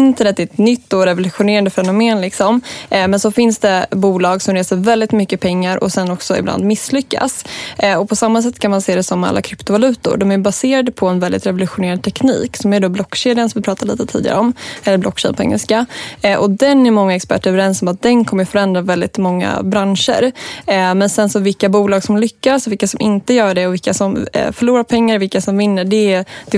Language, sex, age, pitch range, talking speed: English, female, 20-39, 190-225 Hz, 205 wpm